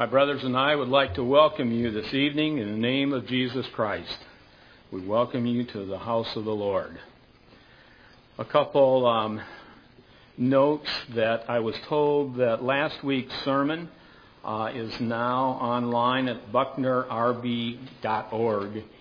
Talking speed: 140 wpm